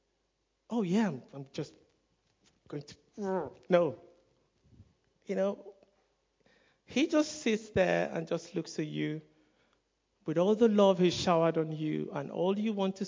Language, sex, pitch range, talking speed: English, male, 165-210 Hz, 145 wpm